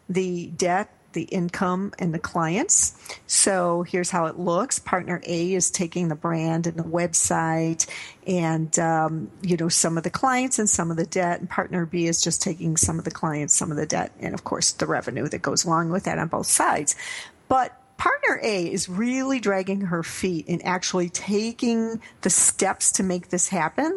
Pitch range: 170-200 Hz